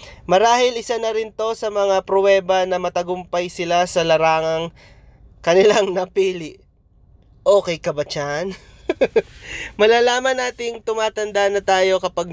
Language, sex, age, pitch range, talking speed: Filipino, male, 20-39, 165-220 Hz, 110 wpm